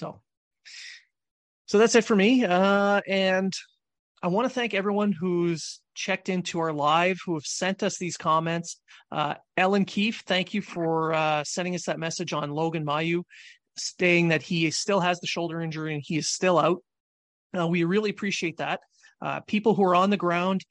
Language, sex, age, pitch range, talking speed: English, male, 30-49, 165-195 Hz, 185 wpm